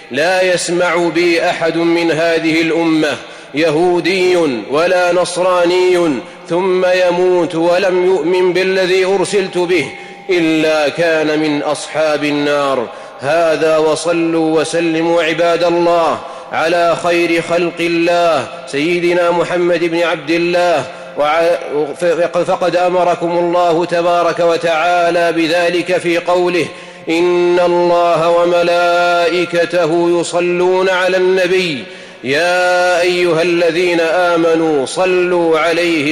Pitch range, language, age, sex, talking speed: 170-180 Hz, Arabic, 30-49, male, 95 wpm